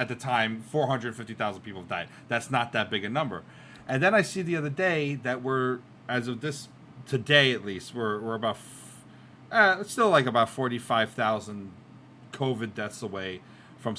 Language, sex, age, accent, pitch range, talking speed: English, male, 30-49, American, 105-130 Hz, 175 wpm